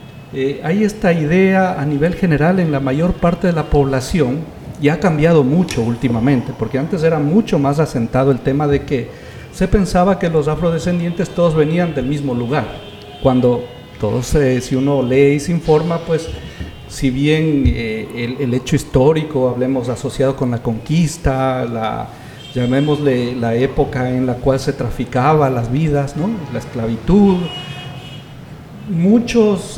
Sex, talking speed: male, 155 wpm